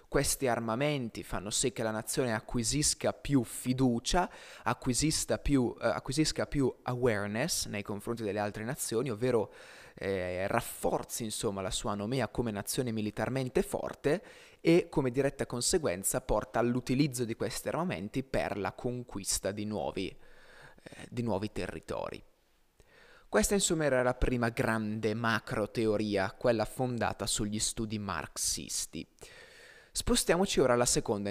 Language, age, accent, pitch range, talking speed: Italian, 20-39, native, 105-145 Hz, 125 wpm